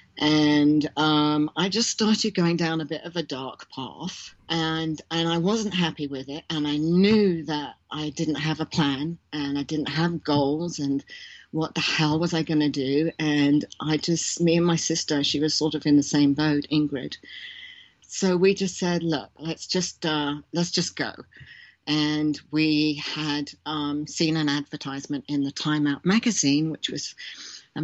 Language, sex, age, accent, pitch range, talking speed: English, female, 50-69, British, 145-165 Hz, 180 wpm